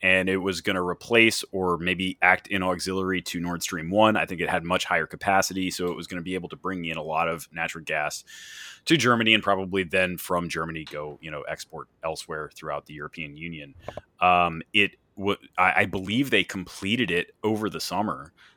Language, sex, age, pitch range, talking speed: English, male, 30-49, 85-100 Hz, 210 wpm